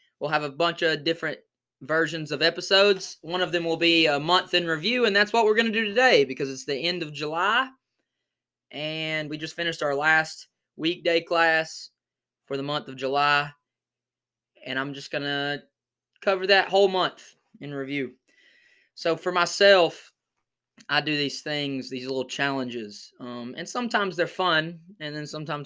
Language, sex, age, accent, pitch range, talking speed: English, male, 20-39, American, 135-175 Hz, 175 wpm